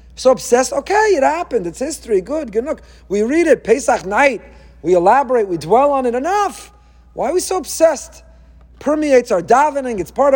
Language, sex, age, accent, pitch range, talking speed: English, male, 40-59, American, 195-260 Hz, 185 wpm